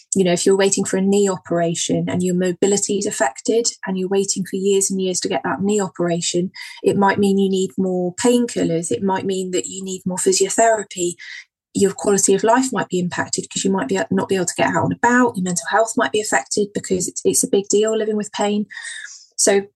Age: 20-39